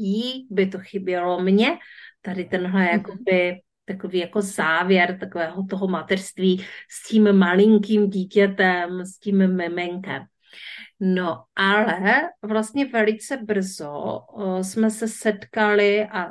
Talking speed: 115 wpm